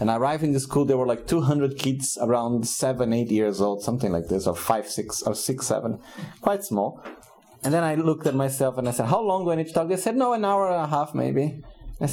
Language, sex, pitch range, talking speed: Italian, male, 125-180 Hz, 260 wpm